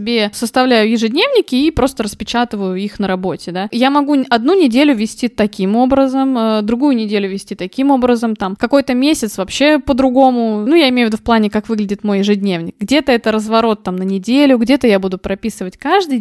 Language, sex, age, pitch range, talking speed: Russian, female, 20-39, 215-275 Hz, 180 wpm